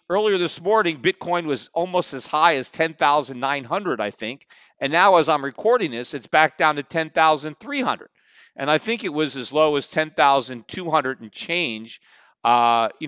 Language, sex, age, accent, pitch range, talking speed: English, male, 40-59, American, 125-175 Hz, 165 wpm